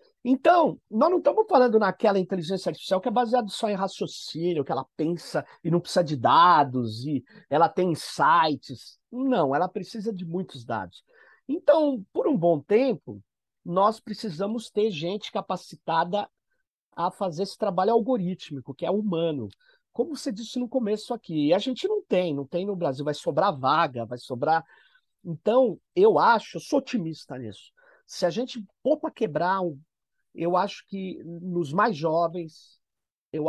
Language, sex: Portuguese, male